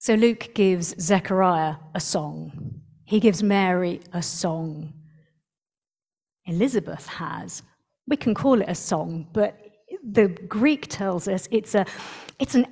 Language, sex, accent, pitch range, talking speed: English, female, British, 180-225 Hz, 130 wpm